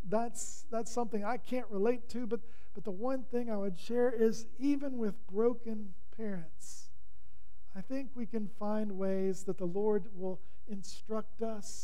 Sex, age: male, 40-59